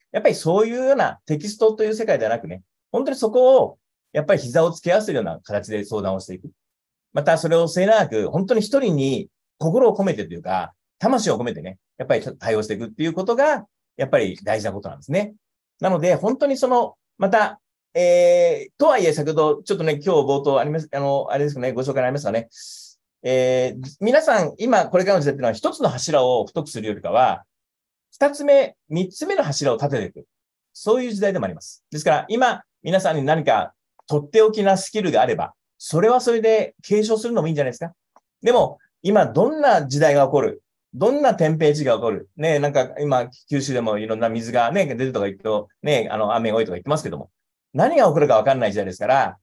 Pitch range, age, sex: 130-220 Hz, 30-49, male